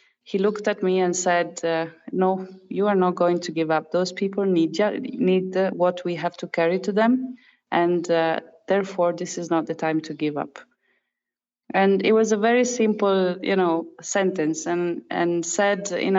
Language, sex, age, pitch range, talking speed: English, female, 20-39, 170-195 Hz, 185 wpm